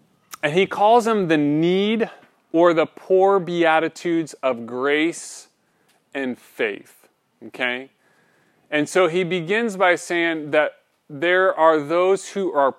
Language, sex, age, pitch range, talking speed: English, male, 30-49, 130-170 Hz, 125 wpm